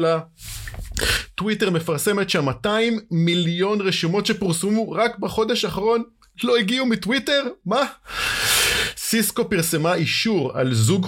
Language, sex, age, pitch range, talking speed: Hebrew, male, 30-49, 140-205 Hz, 100 wpm